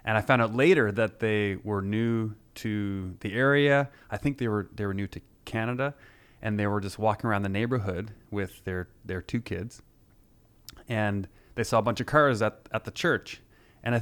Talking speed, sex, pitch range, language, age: 200 wpm, male, 100-120 Hz, English, 30-49